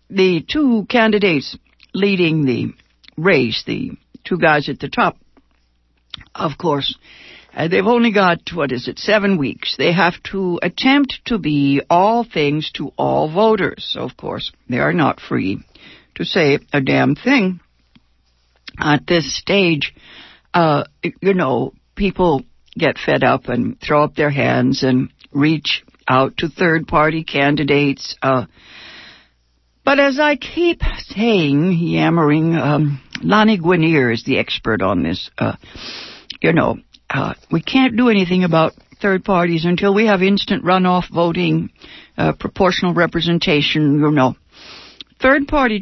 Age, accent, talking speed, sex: 60-79, American, 140 wpm, female